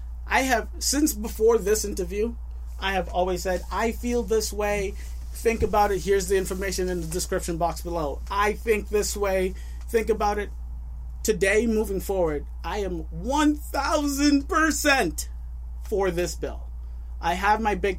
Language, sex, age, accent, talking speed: English, male, 30-49, American, 150 wpm